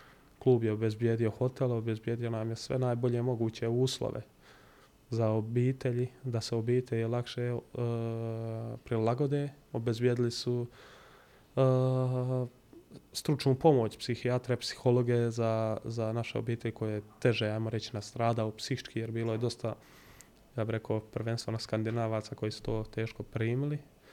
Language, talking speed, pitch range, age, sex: Croatian, 135 wpm, 110-130 Hz, 20-39, male